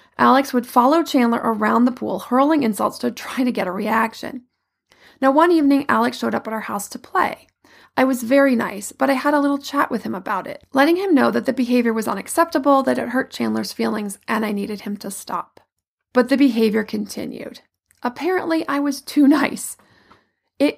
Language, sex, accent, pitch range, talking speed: English, female, American, 215-275 Hz, 200 wpm